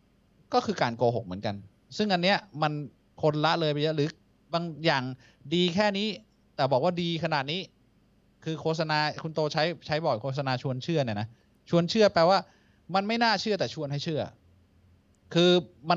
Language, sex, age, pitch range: Thai, male, 20-39, 125-165 Hz